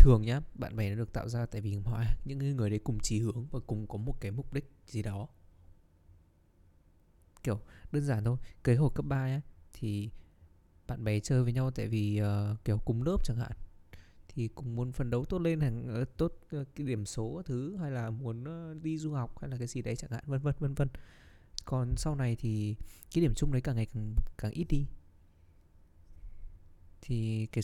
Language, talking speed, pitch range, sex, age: Vietnamese, 205 wpm, 90-130 Hz, male, 20-39